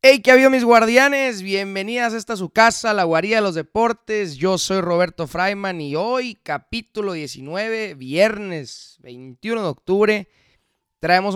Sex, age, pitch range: male, 30-49, 145-215 Hz